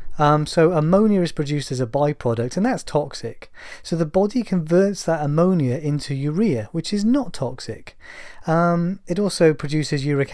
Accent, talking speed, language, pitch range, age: British, 165 wpm, English, 125-170 Hz, 30-49